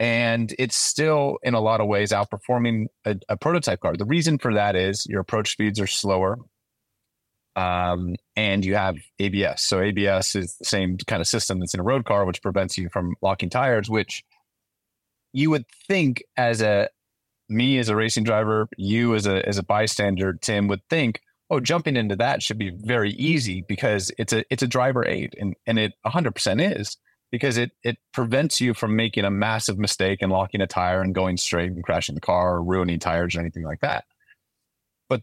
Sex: male